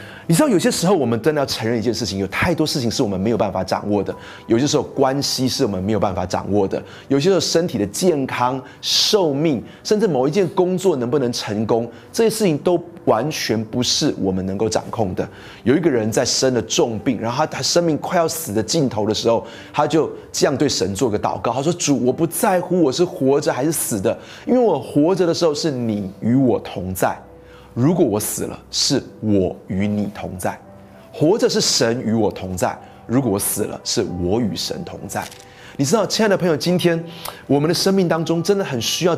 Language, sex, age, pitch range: Chinese, male, 30-49, 105-165 Hz